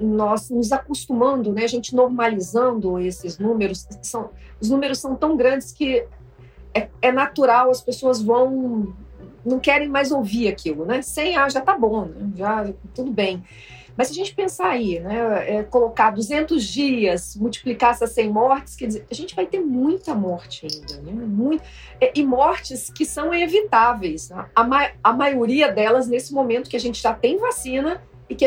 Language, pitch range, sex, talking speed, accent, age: Portuguese, 205-265 Hz, female, 175 wpm, Brazilian, 40-59